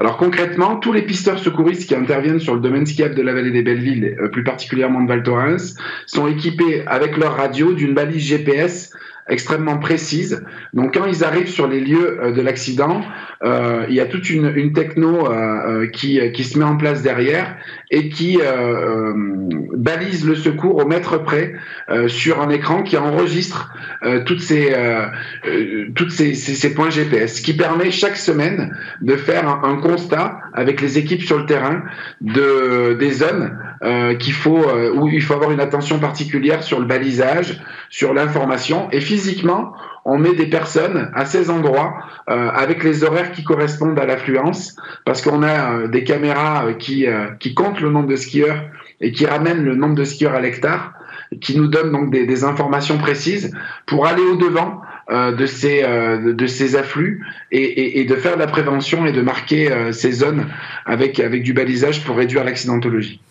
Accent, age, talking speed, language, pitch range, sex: French, 40-59, 185 wpm, French, 130-165 Hz, male